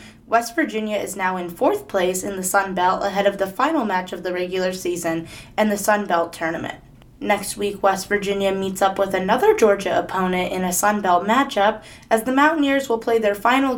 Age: 20-39